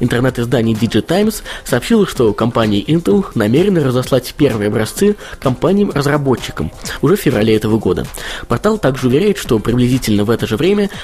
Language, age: Russian, 20-39